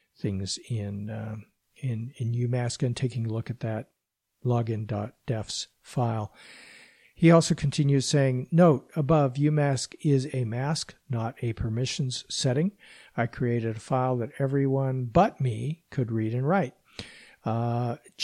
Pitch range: 120-155 Hz